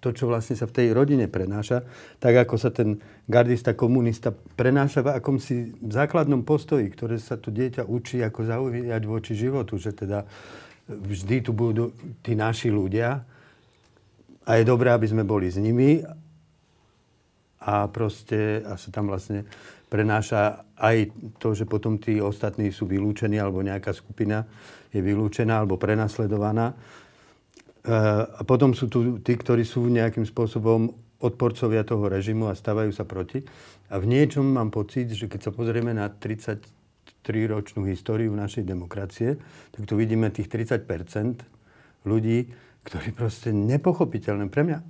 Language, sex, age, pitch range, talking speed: Slovak, male, 40-59, 105-120 Hz, 140 wpm